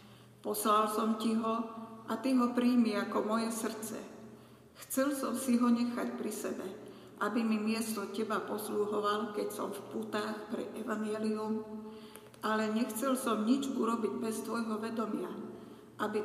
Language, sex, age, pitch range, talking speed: Slovak, female, 50-69, 210-230 Hz, 140 wpm